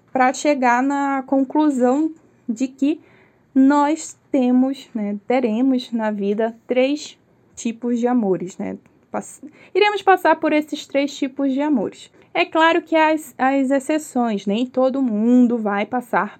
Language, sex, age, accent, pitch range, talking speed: Portuguese, female, 10-29, Brazilian, 230-305 Hz, 135 wpm